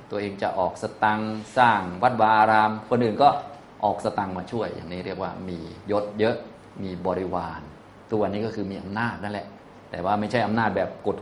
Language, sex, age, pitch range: Thai, male, 20-39, 95-110 Hz